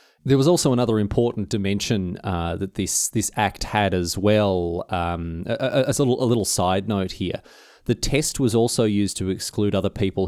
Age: 30-49